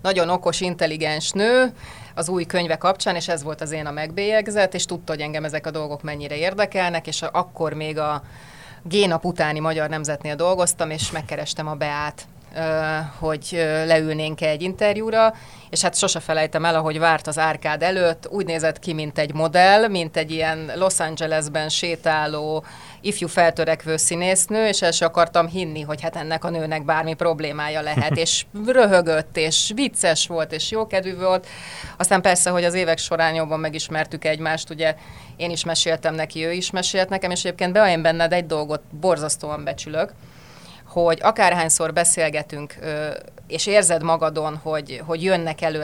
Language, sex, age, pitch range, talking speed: Hungarian, female, 30-49, 155-180 Hz, 160 wpm